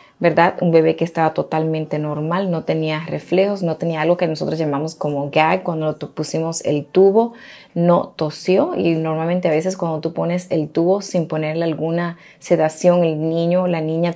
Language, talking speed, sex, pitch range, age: Spanish, 180 wpm, female, 155-185 Hz, 30-49